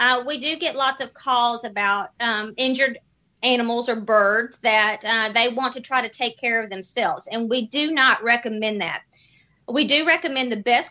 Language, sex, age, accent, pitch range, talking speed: English, female, 30-49, American, 215-255 Hz, 195 wpm